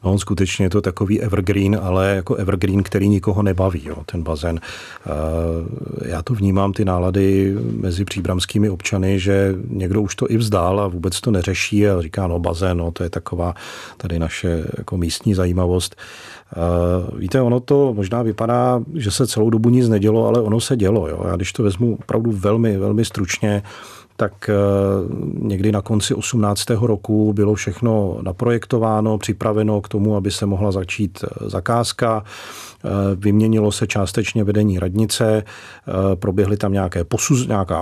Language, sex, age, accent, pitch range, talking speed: Czech, male, 40-59, native, 95-110 Hz, 150 wpm